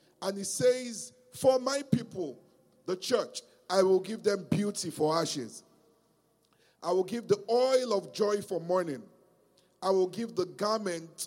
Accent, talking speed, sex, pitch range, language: Nigerian, 155 wpm, male, 155-215 Hz, English